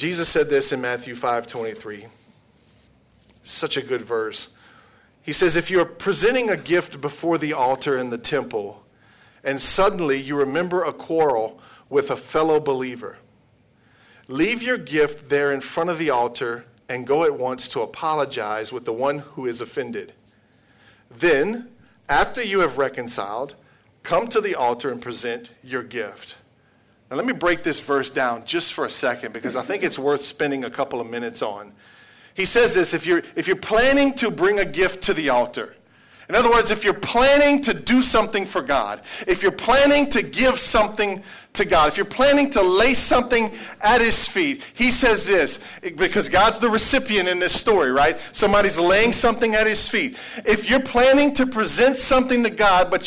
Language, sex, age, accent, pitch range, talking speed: English, male, 40-59, American, 165-250 Hz, 180 wpm